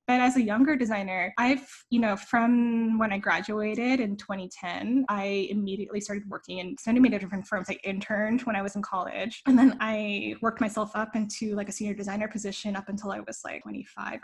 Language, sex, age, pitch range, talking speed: English, female, 10-29, 200-230 Hz, 200 wpm